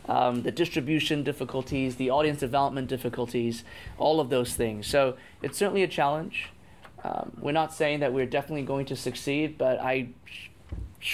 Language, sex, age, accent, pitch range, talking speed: English, male, 20-39, American, 120-150 Hz, 160 wpm